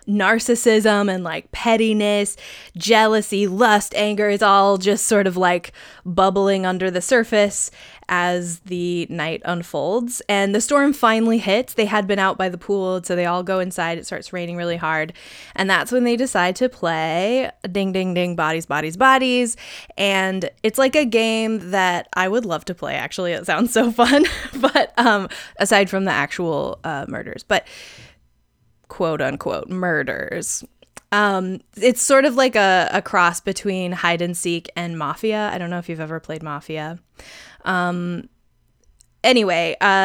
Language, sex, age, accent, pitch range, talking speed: English, female, 20-39, American, 180-225 Hz, 160 wpm